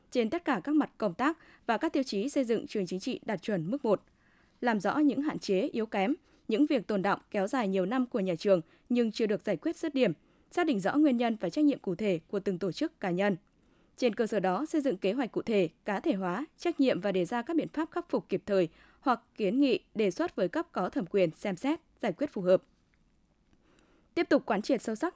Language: Vietnamese